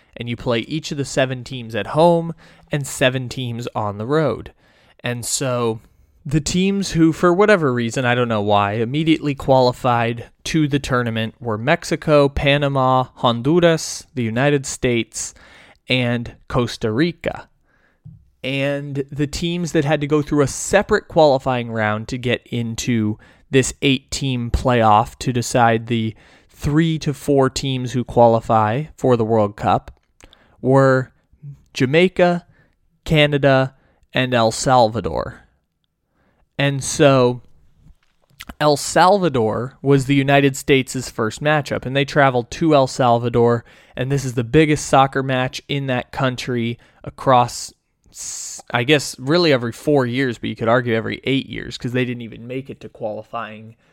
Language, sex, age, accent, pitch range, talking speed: English, male, 20-39, American, 115-145 Hz, 140 wpm